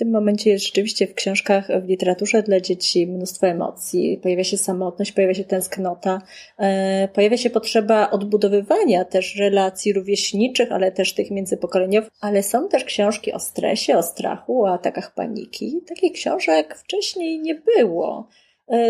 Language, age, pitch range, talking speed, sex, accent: Polish, 30-49, 195-245 Hz, 150 wpm, female, native